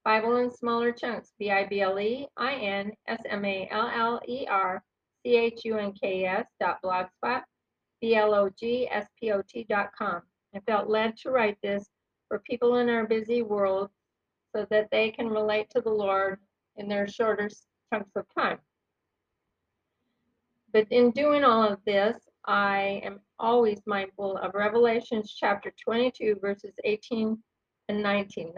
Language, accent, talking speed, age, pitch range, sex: English, American, 110 wpm, 50-69, 195-230 Hz, female